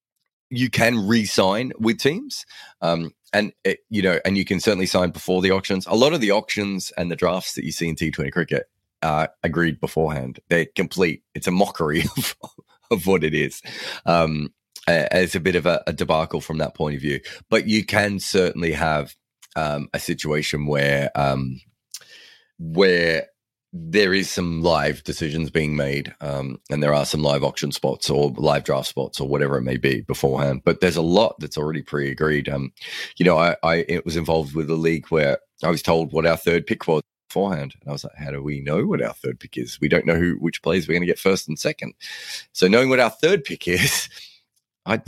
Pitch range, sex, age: 75-95 Hz, male, 30-49